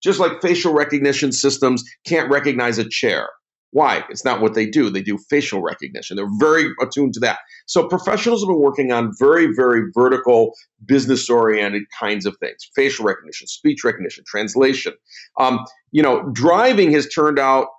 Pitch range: 120-165 Hz